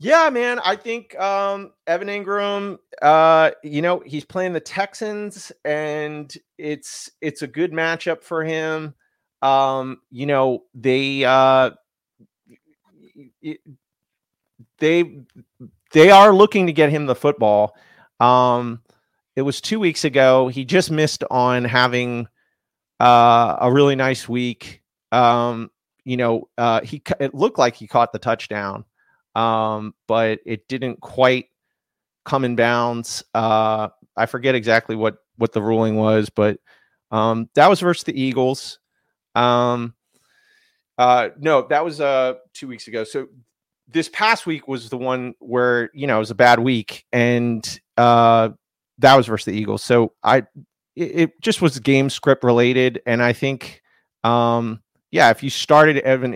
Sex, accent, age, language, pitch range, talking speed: male, American, 30-49, English, 120-155 Hz, 145 wpm